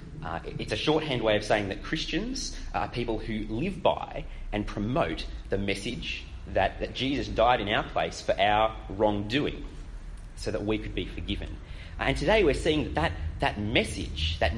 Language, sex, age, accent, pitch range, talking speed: English, male, 30-49, Australian, 80-115 Hz, 175 wpm